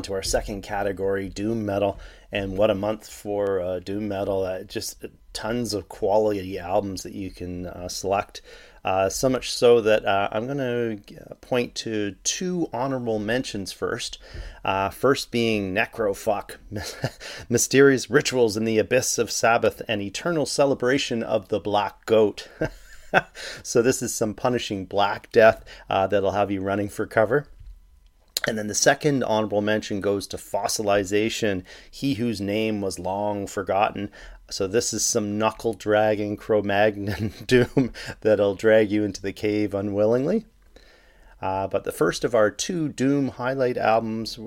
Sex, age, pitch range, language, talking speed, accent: male, 30-49, 100-120 Hz, English, 150 wpm, American